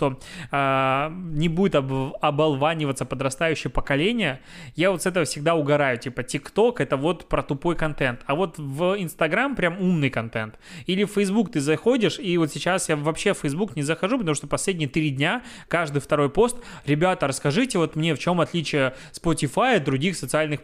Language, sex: Russian, male